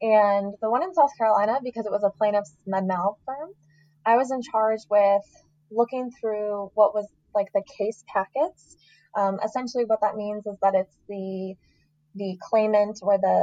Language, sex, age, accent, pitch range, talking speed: English, female, 20-39, American, 185-215 Hz, 175 wpm